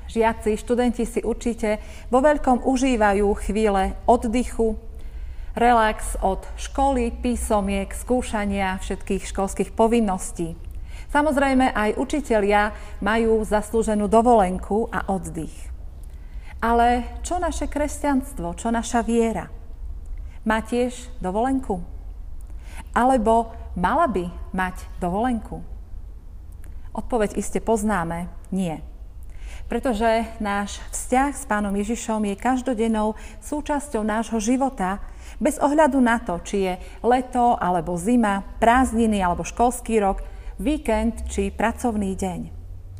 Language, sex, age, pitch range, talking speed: Slovak, female, 40-59, 180-235 Hz, 100 wpm